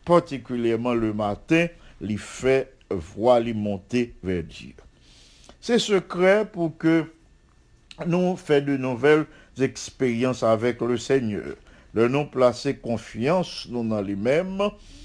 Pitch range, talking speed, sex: 115-160 Hz, 110 wpm, male